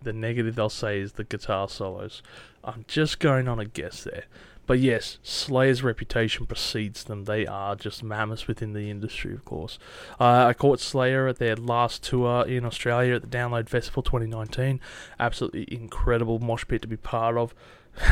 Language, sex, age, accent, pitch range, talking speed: English, male, 20-39, Australian, 105-130 Hz, 175 wpm